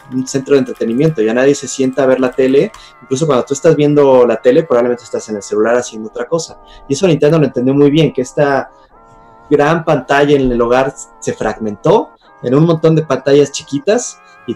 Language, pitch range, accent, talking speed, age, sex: Spanish, 125-155 Hz, Mexican, 205 wpm, 30-49, male